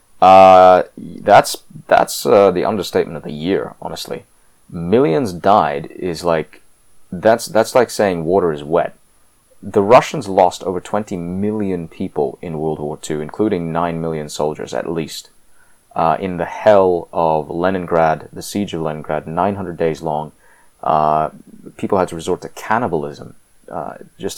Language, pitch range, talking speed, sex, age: English, 80-95 Hz, 150 wpm, male, 30-49